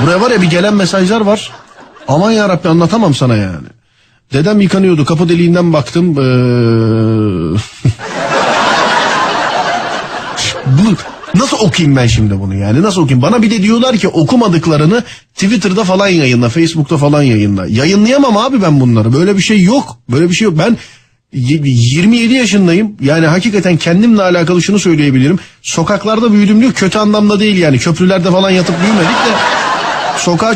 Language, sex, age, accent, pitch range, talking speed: Turkish, male, 40-59, native, 155-215 Hz, 140 wpm